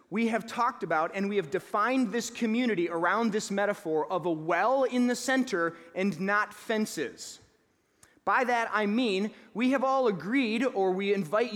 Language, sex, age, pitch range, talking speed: English, male, 30-49, 205-260 Hz, 170 wpm